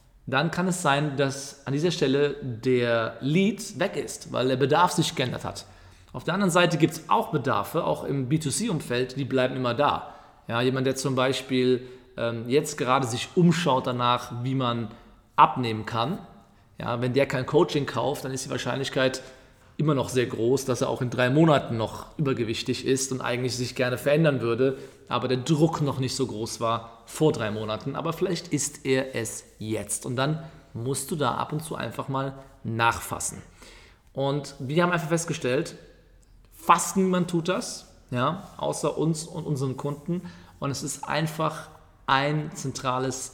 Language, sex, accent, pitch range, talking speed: German, male, German, 120-150 Hz, 170 wpm